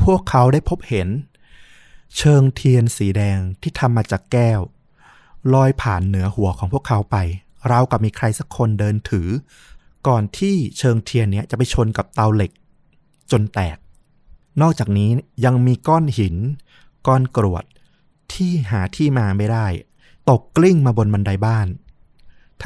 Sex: male